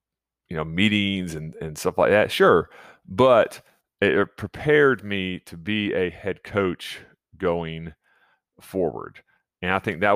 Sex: male